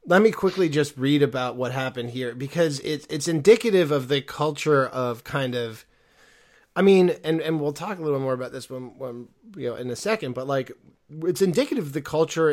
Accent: American